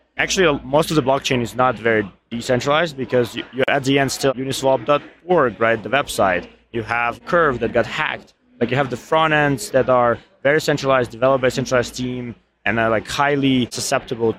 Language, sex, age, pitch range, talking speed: English, male, 20-39, 120-140 Hz, 190 wpm